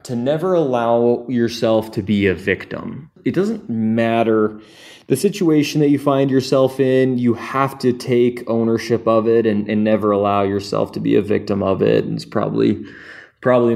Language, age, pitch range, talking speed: English, 20-39, 110-125 Hz, 175 wpm